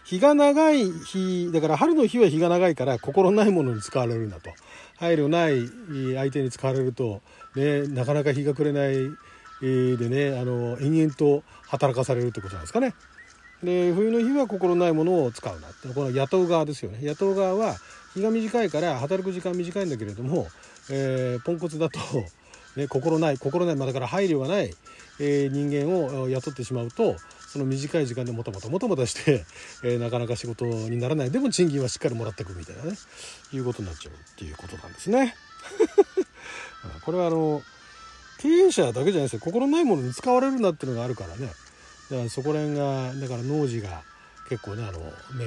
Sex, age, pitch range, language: male, 40-59, 125-175 Hz, Japanese